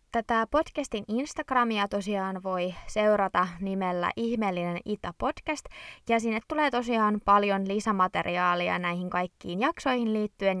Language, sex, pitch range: Finnish, female, 180-215 Hz